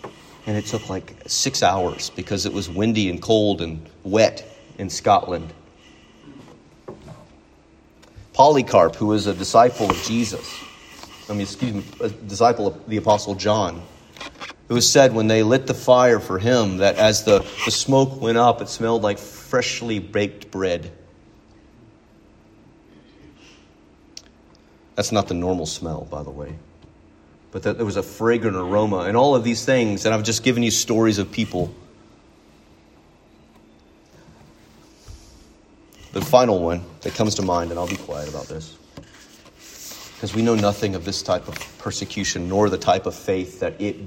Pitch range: 90-115 Hz